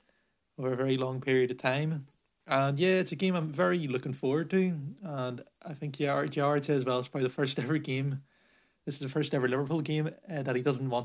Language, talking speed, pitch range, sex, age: English, 230 wpm, 130-150 Hz, male, 30-49